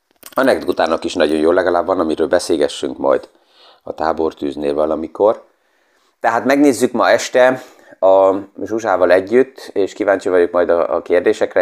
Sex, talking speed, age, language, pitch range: male, 130 wpm, 30-49, Hungarian, 90-105 Hz